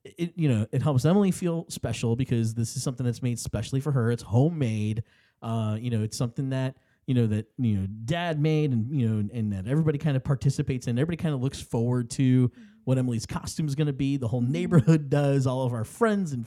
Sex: male